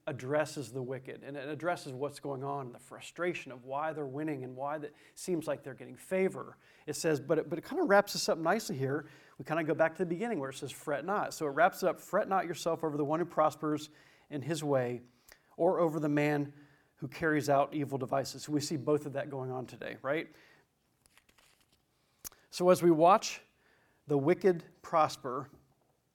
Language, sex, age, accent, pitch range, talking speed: English, male, 40-59, American, 145-175 Hz, 210 wpm